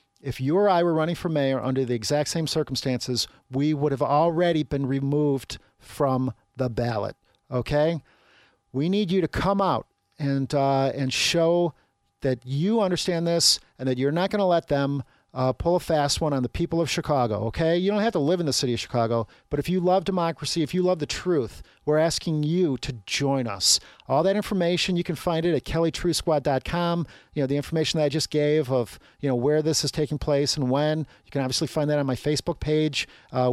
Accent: American